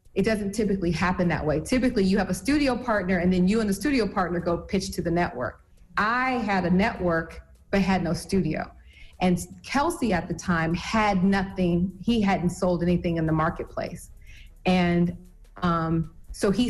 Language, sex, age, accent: English, female, 30-49, American